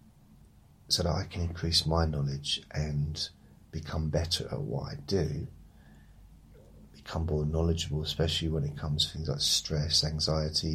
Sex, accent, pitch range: male, British, 75-90 Hz